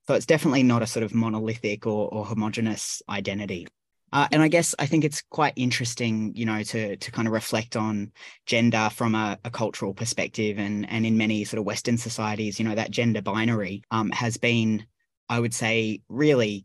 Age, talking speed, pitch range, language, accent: 20-39, 200 wpm, 110-120 Hz, English, Australian